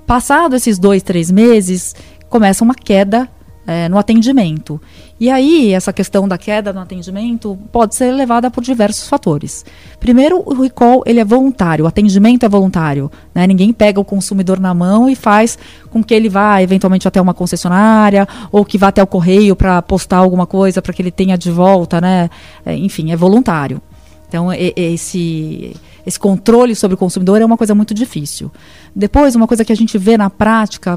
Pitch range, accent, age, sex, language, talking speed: 180-225 Hz, Brazilian, 20-39, female, Portuguese, 180 wpm